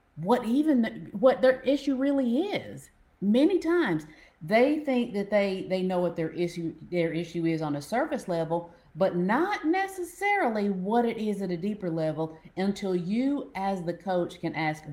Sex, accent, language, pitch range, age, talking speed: female, American, English, 165-235 Hz, 40-59, 170 wpm